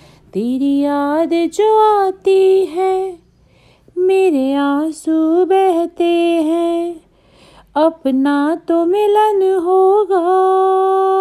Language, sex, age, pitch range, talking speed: Hindi, female, 30-49, 285-345 Hz, 70 wpm